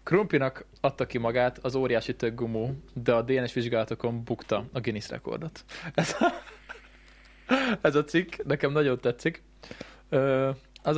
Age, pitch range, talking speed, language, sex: 20-39, 115-140 Hz, 140 wpm, Hungarian, male